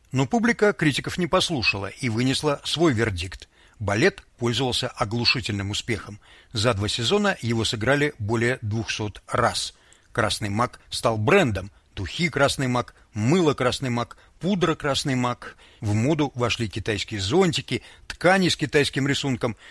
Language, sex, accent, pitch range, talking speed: Russian, male, native, 110-145 Hz, 130 wpm